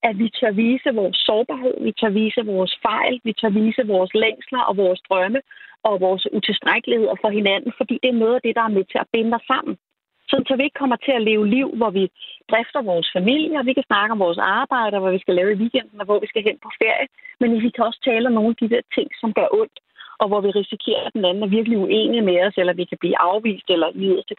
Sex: female